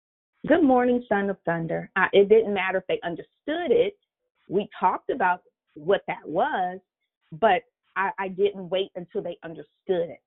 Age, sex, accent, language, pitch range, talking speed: 40-59, female, American, English, 195-265 Hz, 160 wpm